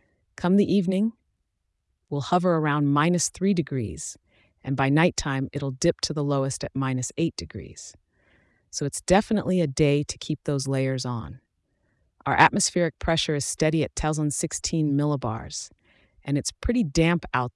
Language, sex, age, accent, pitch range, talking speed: English, female, 40-59, American, 135-170 Hz, 150 wpm